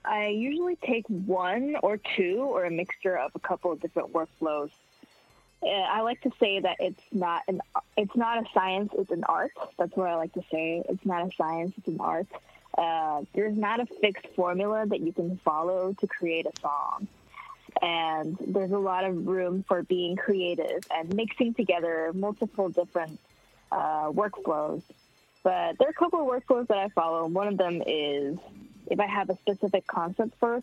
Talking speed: 190 wpm